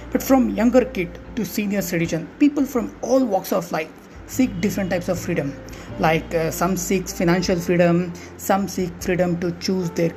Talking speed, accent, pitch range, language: 175 wpm, Indian, 160-220 Hz, English